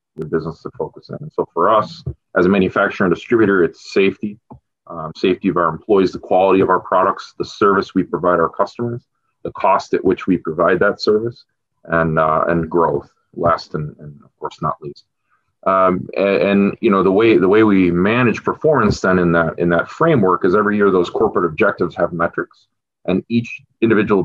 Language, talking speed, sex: English, 200 wpm, male